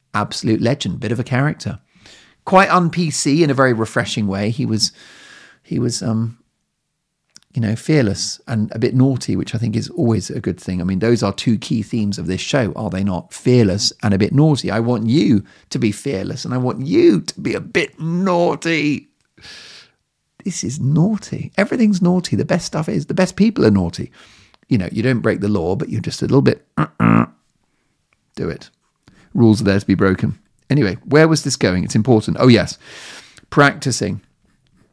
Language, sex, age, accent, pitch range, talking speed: English, male, 40-59, British, 100-140 Hz, 195 wpm